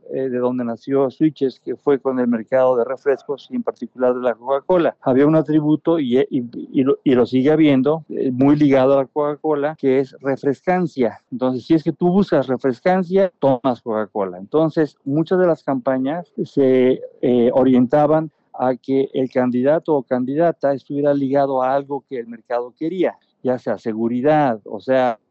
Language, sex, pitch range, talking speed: Spanish, male, 130-155 Hz, 165 wpm